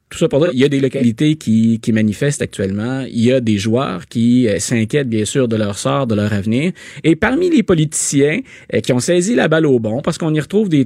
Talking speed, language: 250 wpm, French